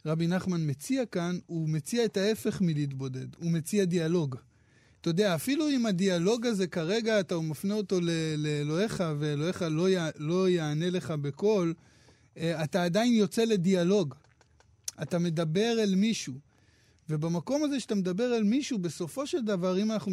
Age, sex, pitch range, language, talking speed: 20-39, male, 155-210 Hz, Hebrew, 150 wpm